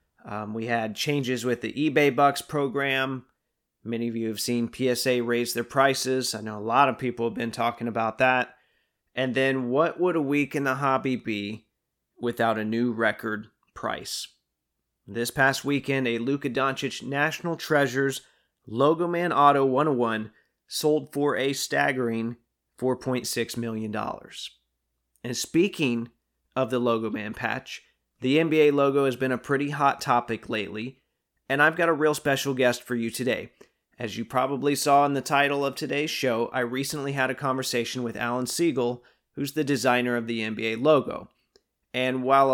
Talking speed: 160 wpm